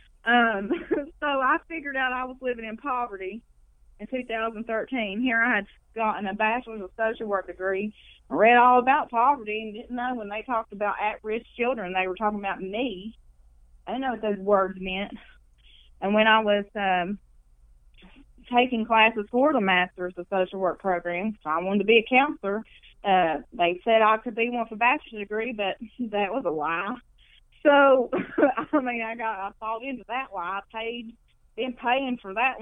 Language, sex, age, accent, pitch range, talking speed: English, female, 20-39, American, 195-245 Hz, 180 wpm